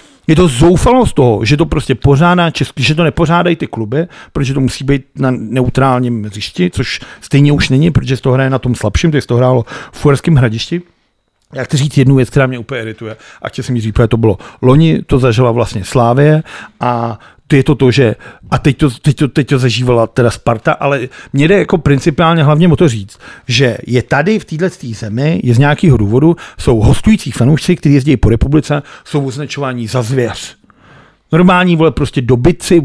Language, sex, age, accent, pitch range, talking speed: Czech, male, 50-69, native, 125-165 Hz, 200 wpm